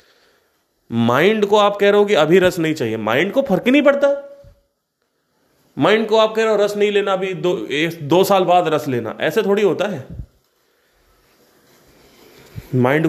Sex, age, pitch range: male, 30-49, 135-190 Hz